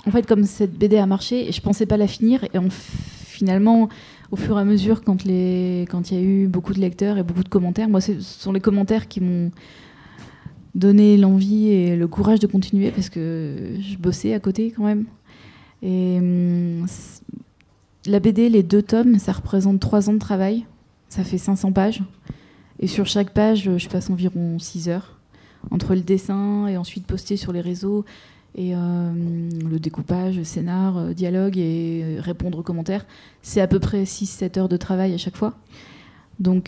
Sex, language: female, French